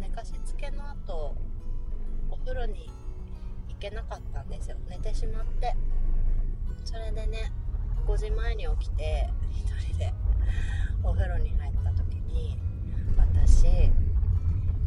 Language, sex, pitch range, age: Japanese, female, 85-90 Hz, 30-49